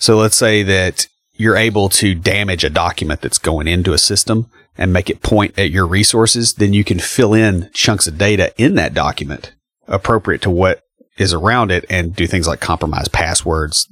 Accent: American